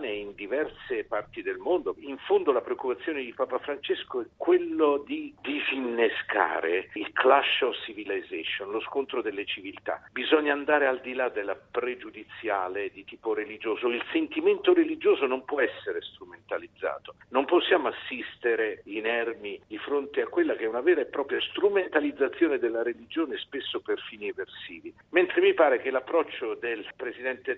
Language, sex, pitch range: Italian, male, 320-430 Hz